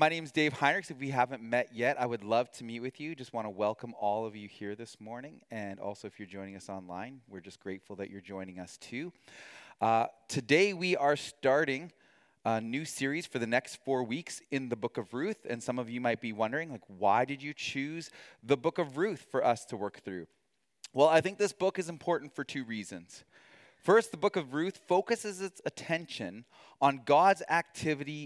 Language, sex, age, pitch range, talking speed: English, male, 30-49, 120-170 Hz, 215 wpm